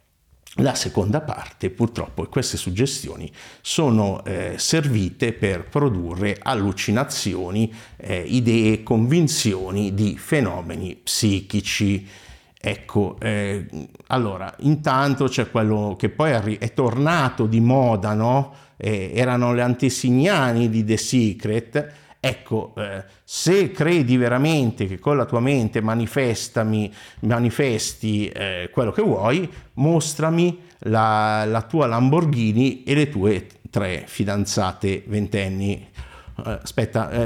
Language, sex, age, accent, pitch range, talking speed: Italian, male, 50-69, native, 100-140 Hz, 105 wpm